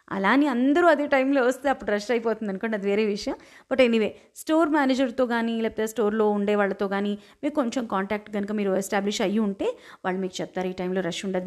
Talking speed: 195 wpm